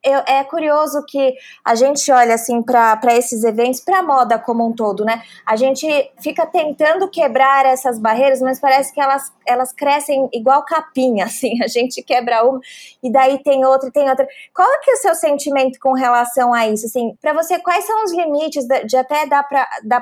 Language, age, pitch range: Portuguese, 20-39, 240-285 Hz